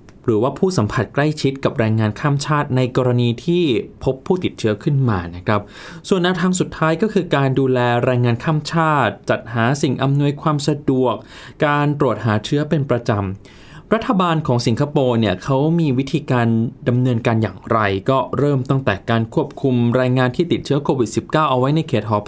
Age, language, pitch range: 20-39, Thai, 115-150 Hz